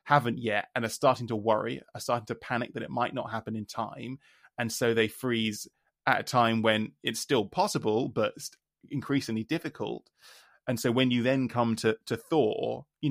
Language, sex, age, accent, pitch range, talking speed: English, male, 20-39, British, 110-130 Hz, 190 wpm